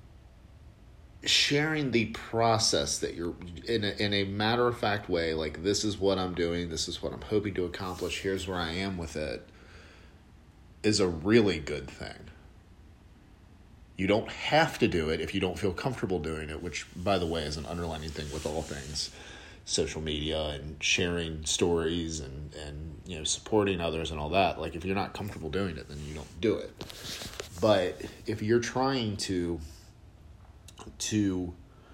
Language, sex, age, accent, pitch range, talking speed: English, male, 40-59, American, 80-105 Hz, 170 wpm